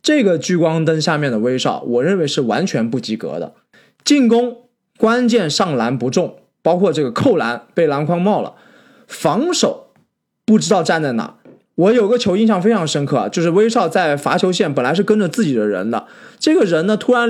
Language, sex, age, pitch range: Chinese, male, 20-39, 170-245 Hz